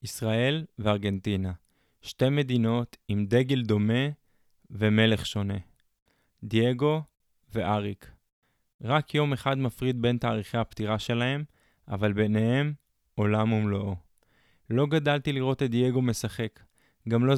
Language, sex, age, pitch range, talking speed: Hebrew, male, 20-39, 115-135 Hz, 105 wpm